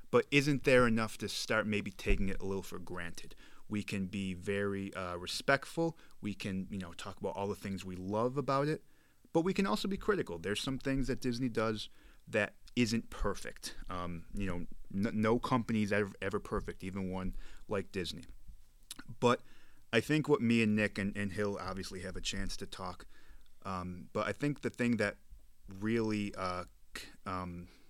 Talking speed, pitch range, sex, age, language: 190 wpm, 90-110 Hz, male, 30-49, English